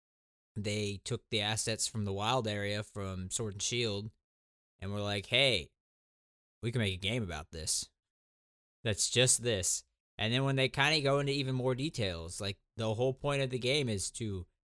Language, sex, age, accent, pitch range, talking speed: English, male, 20-39, American, 95-130 Hz, 190 wpm